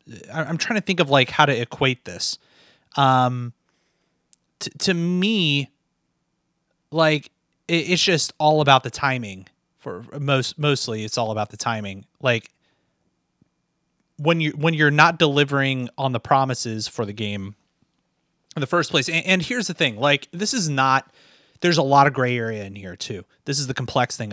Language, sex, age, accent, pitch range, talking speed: English, male, 30-49, American, 125-165 Hz, 175 wpm